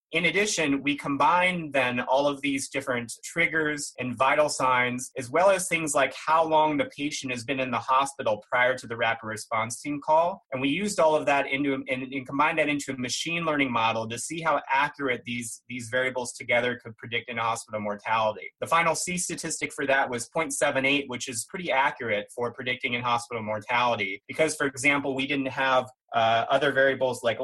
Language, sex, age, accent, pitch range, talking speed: English, male, 30-49, American, 120-145 Hz, 195 wpm